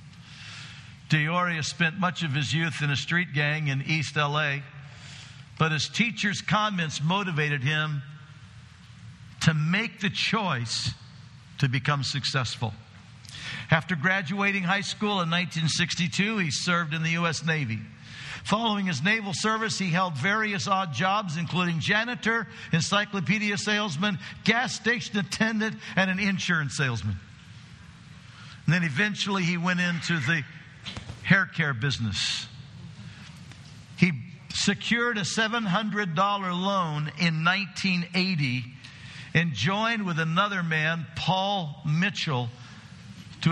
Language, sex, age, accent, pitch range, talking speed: English, male, 60-79, American, 135-185 Hz, 120 wpm